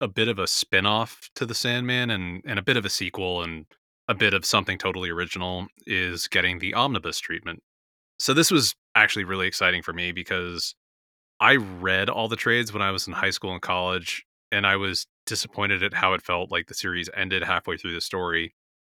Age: 30-49